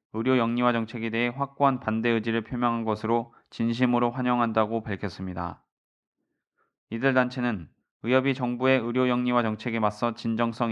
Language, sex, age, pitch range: Korean, male, 20-39, 110-125 Hz